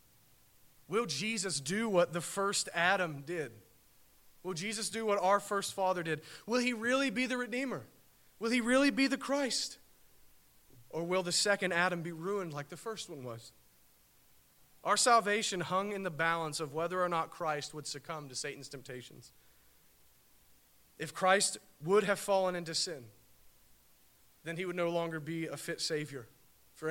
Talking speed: 165 wpm